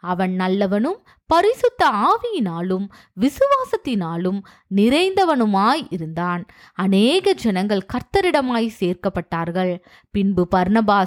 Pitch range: 185-285 Hz